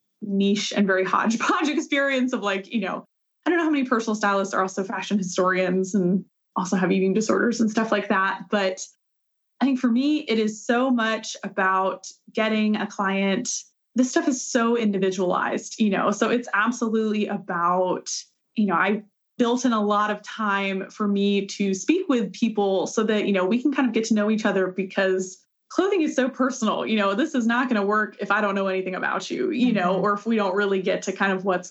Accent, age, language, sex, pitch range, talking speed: American, 20-39, English, female, 195-245 Hz, 215 wpm